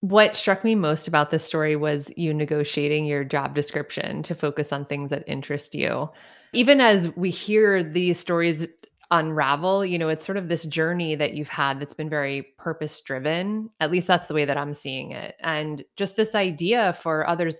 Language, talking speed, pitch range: English, 195 wpm, 145-185 Hz